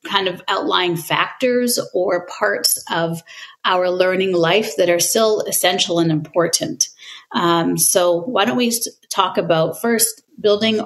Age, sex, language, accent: 30-49, female, English, American